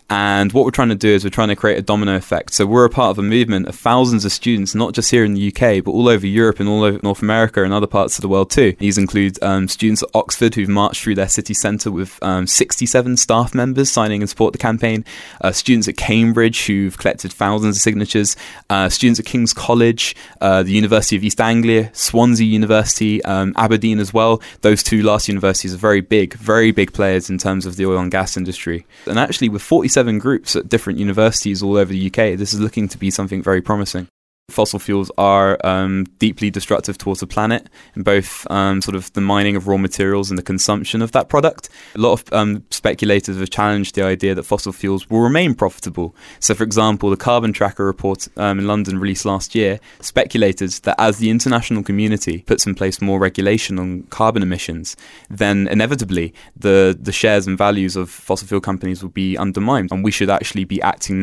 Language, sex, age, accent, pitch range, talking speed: English, male, 10-29, British, 95-110 Hz, 215 wpm